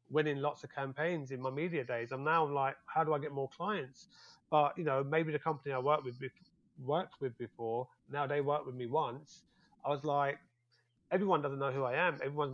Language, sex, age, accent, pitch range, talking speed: English, male, 30-49, British, 130-150 Hz, 230 wpm